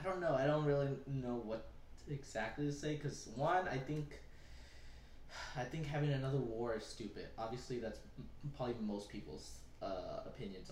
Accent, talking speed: American, 160 wpm